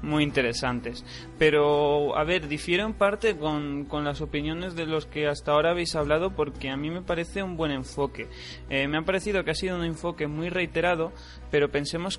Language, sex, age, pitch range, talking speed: Spanish, male, 20-39, 145-180 Hz, 195 wpm